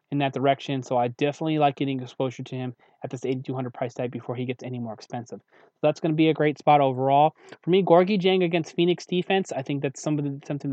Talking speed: 235 wpm